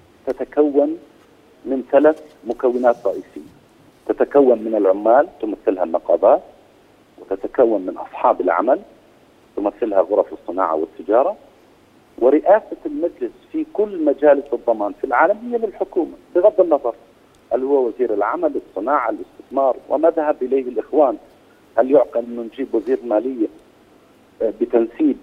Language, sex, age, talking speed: Arabic, male, 50-69, 110 wpm